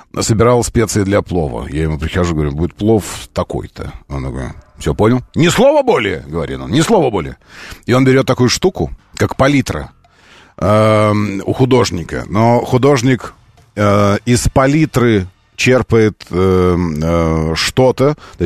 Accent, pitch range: native, 95-135 Hz